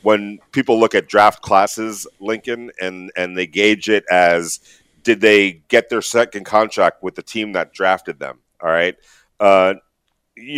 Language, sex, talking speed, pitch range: English, male, 160 wpm, 95-125 Hz